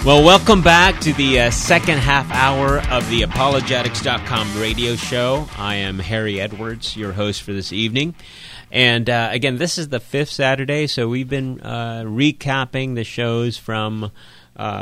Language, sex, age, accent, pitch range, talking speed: English, male, 30-49, American, 100-130 Hz, 160 wpm